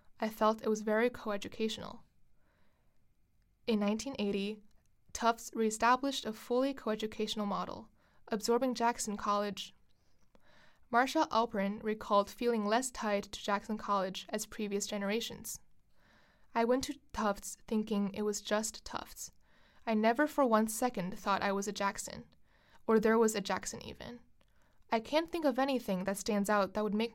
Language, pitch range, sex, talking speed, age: English, 205-235 Hz, female, 145 wpm, 20-39